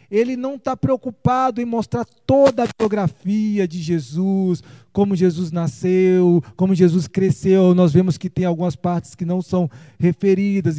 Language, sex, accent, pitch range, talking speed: Portuguese, male, Brazilian, 170-220 Hz, 150 wpm